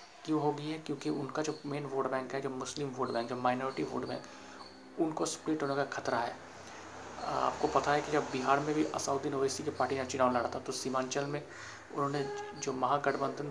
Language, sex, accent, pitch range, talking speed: Hindi, male, native, 130-145 Hz, 200 wpm